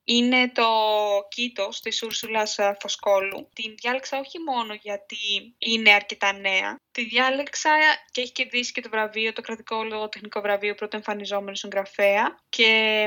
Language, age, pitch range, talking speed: Greek, 20-39, 205-240 Hz, 140 wpm